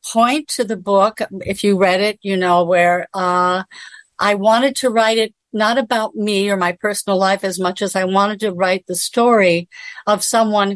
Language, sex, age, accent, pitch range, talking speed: English, female, 60-79, American, 185-220 Hz, 195 wpm